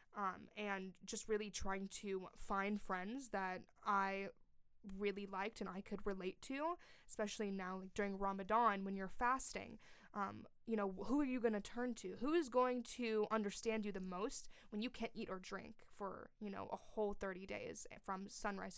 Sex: female